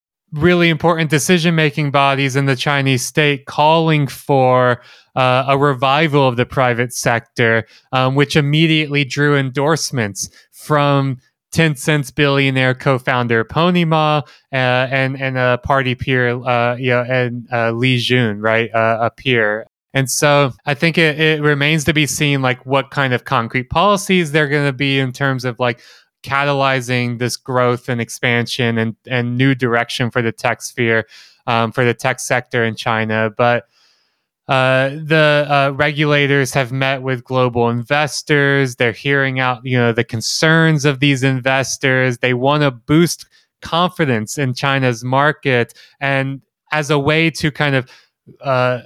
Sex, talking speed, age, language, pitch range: male, 155 wpm, 20-39, English, 125-145 Hz